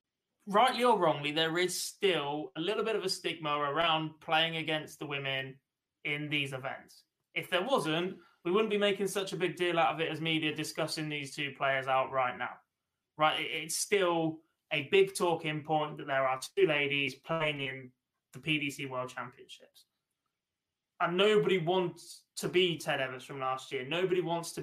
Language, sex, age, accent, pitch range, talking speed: English, male, 20-39, British, 140-175 Hz, 180 wpm